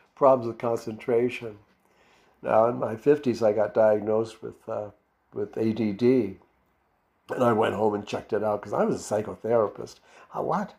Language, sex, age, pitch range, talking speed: English, male, 60-79, 110-140 Hz, 160 wpm